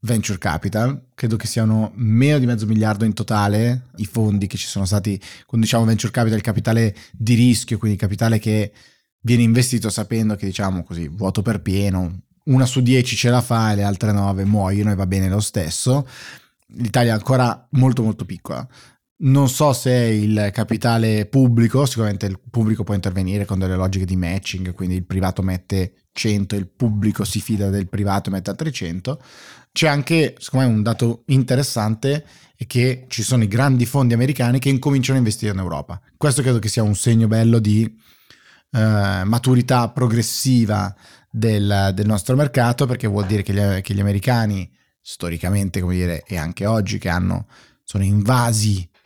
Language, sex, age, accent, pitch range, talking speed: Italian, male, 20-39, native, 100-120 Hz, 180 wpm